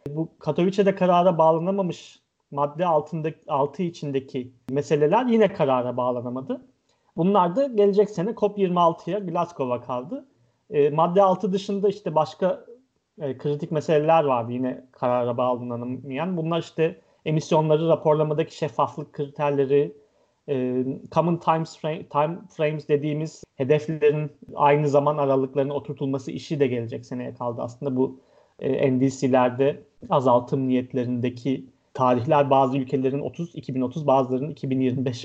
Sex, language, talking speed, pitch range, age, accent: male, Turkish, 115 wpm, 130-160 Hz, 40-59, native